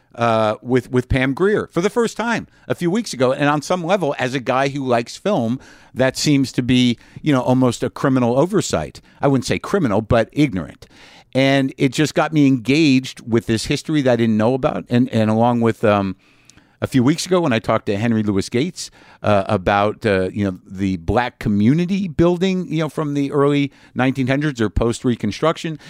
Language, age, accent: English, 50-69, American